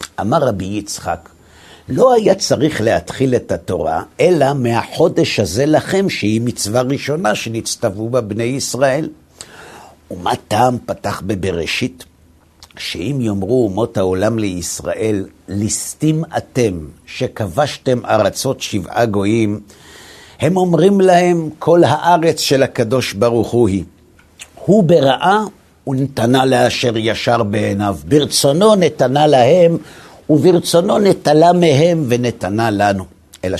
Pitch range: 100-140 Hz